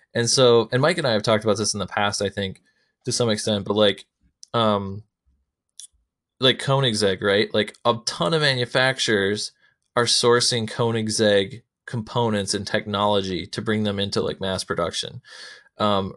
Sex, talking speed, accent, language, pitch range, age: male, 160 wpm, American, English, 100-120 Hz, 20-39